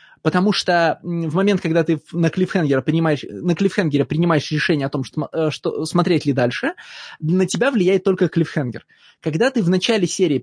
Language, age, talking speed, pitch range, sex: Russian, 20-39, 160 wpm, 155-195 Hz, male